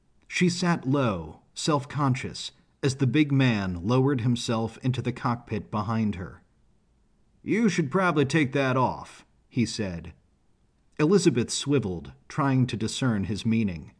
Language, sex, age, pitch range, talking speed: English, male, 40-59, 105-145 Hz, 130 wpm